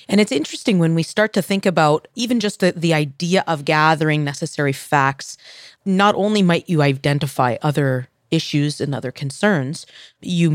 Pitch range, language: 145-180 Hz, English